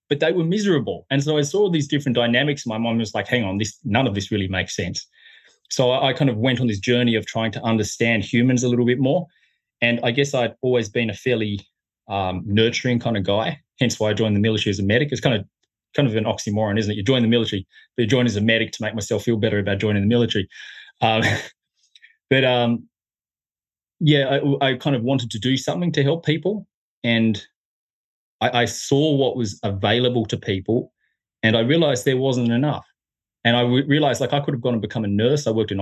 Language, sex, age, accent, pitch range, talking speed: English, male, 20-39, Australian, 110-135 Hz, 230 wpm